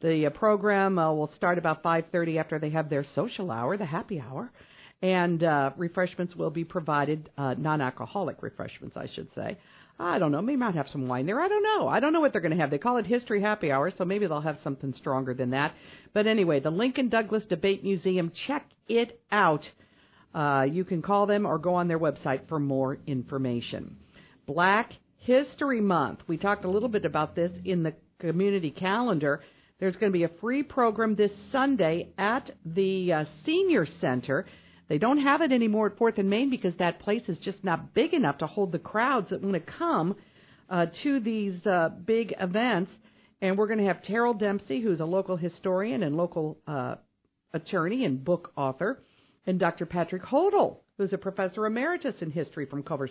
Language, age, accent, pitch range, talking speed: English, 50-69, American, 155-210 Hz, 195 wpm